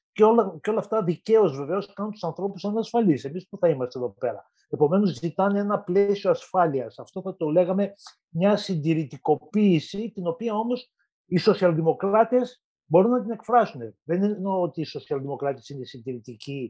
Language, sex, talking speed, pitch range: Greek, male, 160 wpm, 140-190 Hz